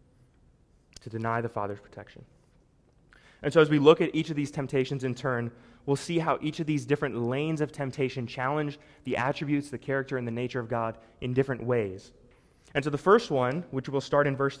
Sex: male